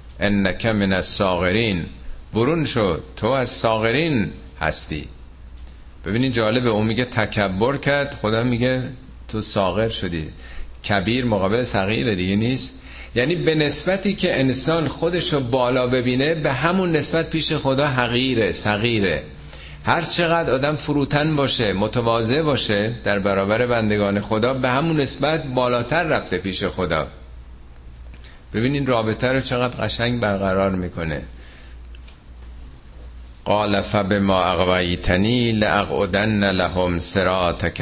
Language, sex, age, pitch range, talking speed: Persian, male, 50-69, 80-125 Hz, 115 wpm